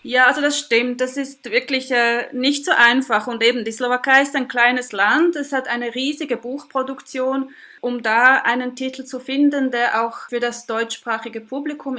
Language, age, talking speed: Slovak, 30-49, 180 wpm